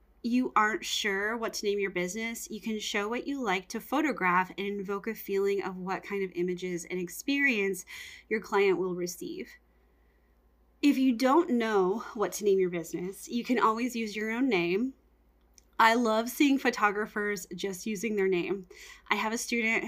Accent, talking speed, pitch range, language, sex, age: American, 180 wpm, 195-245 Hz, English, female, 20-39